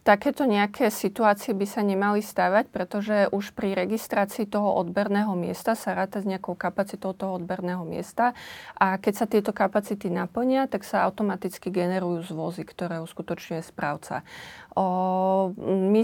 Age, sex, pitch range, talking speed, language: 30-49, female, 180-200 Hz, 140 wpm, Slovak